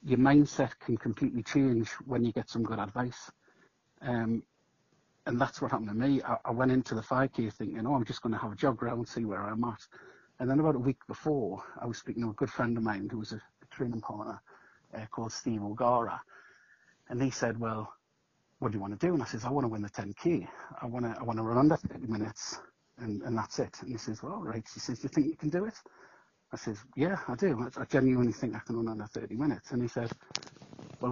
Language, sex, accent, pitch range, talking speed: English, male, British, 110-135 Hz, 250 wpm